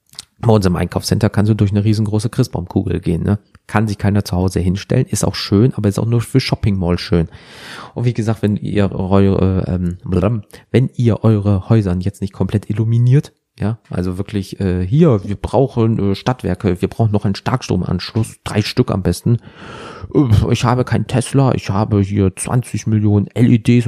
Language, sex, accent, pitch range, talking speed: German, male, German, 95-120 Hz, 175 wpm